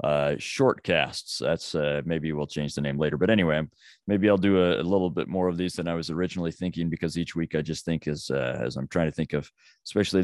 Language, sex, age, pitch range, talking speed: English, male, 30-49, 80-95 Hz, 245 wpm